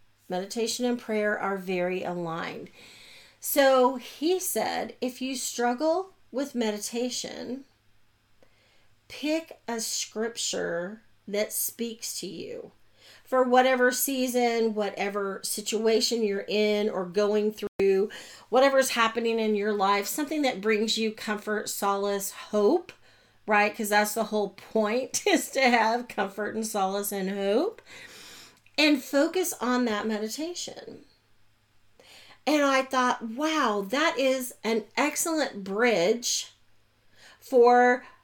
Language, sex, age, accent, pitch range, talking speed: English, female, 40-59, American, 205-255 Hz, 115 wpm